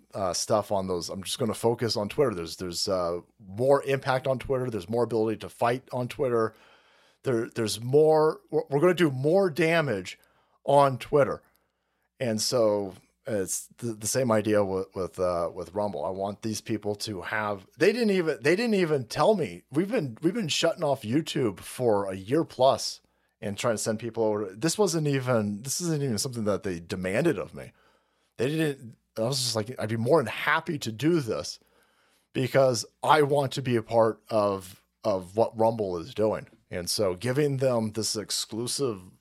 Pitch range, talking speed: 105-155 Hz, 190 wpm